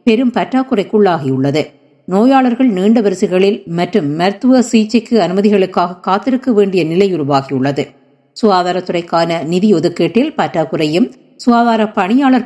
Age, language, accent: 50-69, Tamil, native